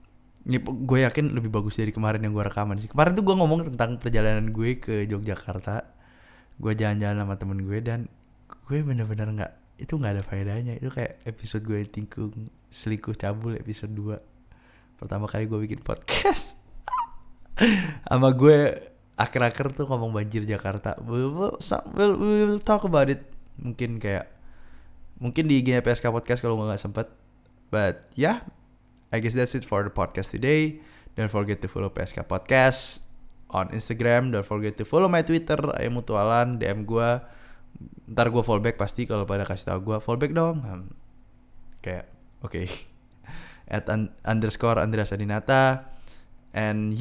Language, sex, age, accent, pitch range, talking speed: Indonesian, male, 20-39, native, 105-130 Hz, 150 wpm